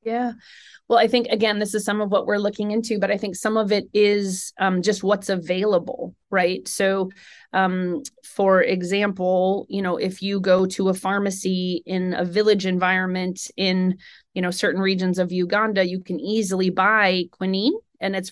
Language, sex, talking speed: English, female, 180 wpm